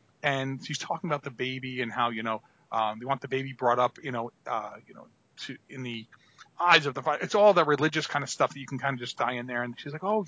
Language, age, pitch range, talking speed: English, 30-49, 130-160 Hz, 280 wpm